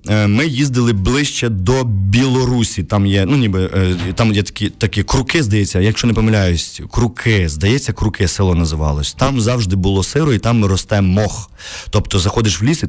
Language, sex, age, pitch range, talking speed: Ukrainian, male, 30-49, 95-120 Hz, 170 wpm